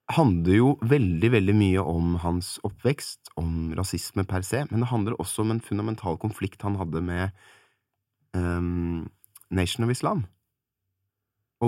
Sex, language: male, English